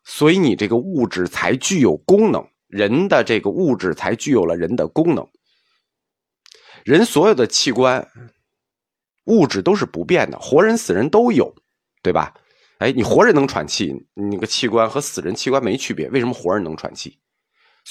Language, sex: Chinese, male